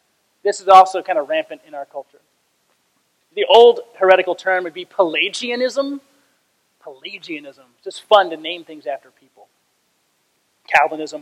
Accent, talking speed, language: American, 140 wpm, English